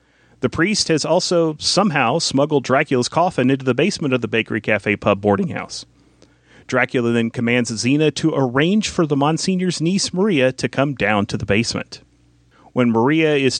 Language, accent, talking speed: English, American, 160 wpm